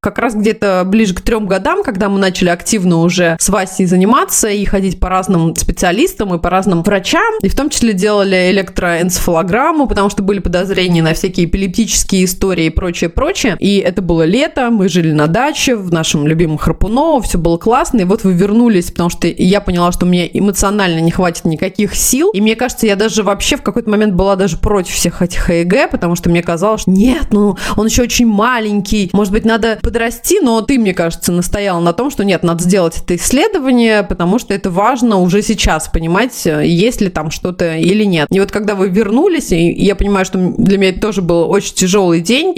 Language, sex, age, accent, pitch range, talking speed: Russian, female, 20-39, native, 180-220 Hz, 200 wpm